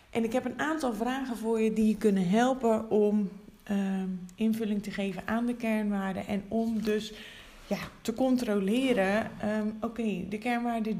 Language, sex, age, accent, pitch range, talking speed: Dutch, female, 20-39, Dutch, 185-215 Hz, 145 wpm